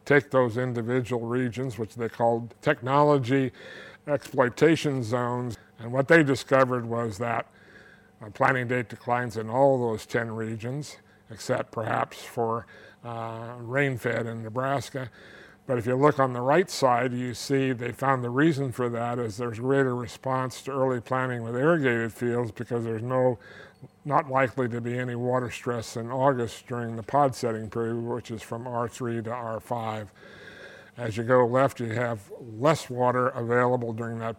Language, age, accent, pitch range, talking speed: English, 60-79, American, 115-130 Hz, 165 wpm